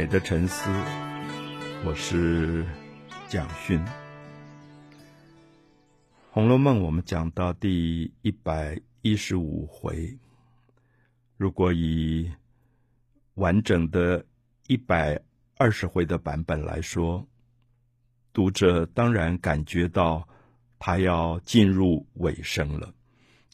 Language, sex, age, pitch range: Chinese, male, 50-69, 85-120 Hz